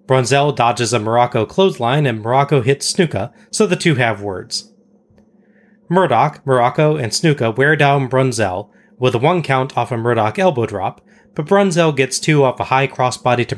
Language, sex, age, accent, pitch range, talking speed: English, male, 30-49, American, 125-170 Hz, 170 wpm